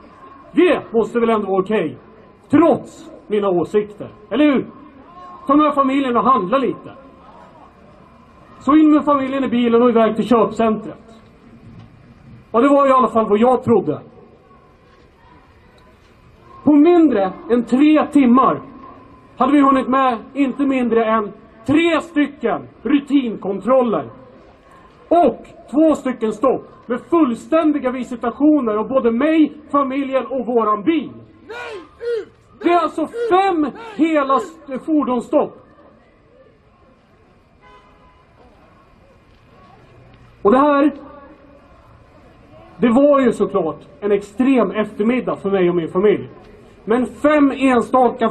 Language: Swedish